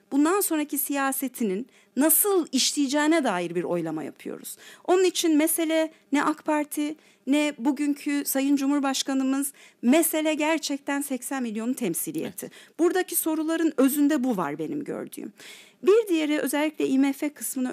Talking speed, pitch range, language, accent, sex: 120 wpm, 255-320 Hz, Turkish, native, female